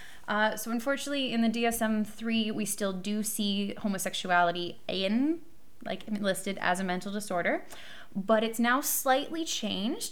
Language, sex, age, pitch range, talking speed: English, female, 20-39, 180-230 Hz, 135 wpm